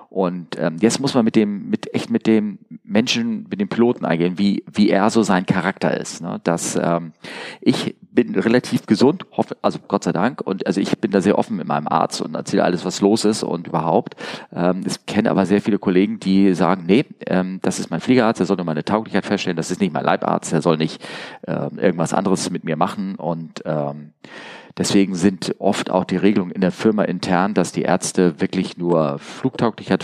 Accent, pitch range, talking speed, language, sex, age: German, 85-105 Hz, 210 wpm, German, male, 40-59